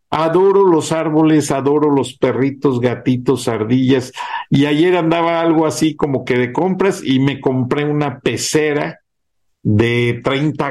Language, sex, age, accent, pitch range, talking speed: Spanish, male, 50-69, Mexican, 115-145 Hz, 135 wpm